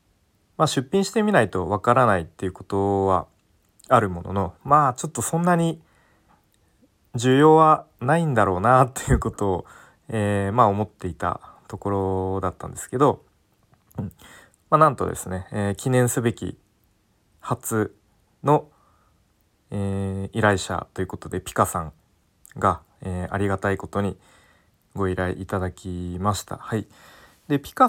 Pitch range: 95-130 Hz